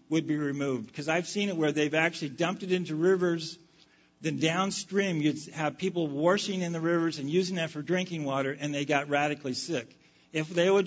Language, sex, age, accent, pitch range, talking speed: English, male, 50-69, American, 150-190 Hz, 205 wpm